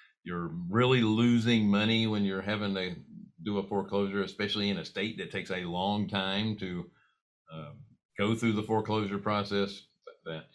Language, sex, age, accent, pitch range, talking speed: English, male, 50-69, American, 100-125 Hz, 160 wpm